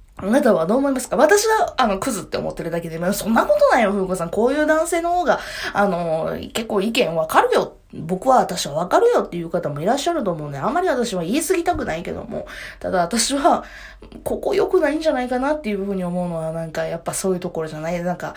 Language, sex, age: Japanese, female, 20-39